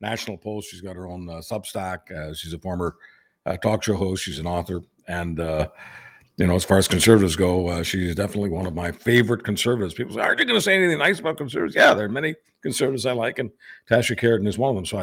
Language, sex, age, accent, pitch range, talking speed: English, male, 50-69, American, 95-120 Hz, 250 wpm